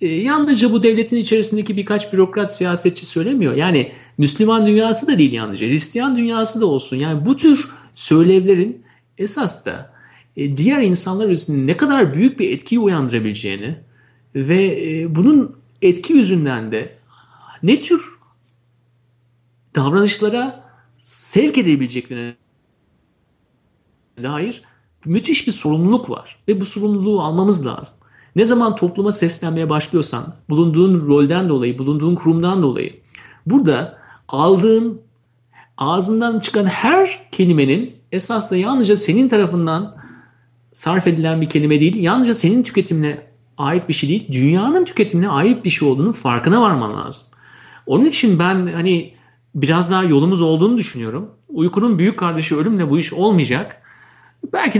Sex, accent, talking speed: male, native, 120 wpm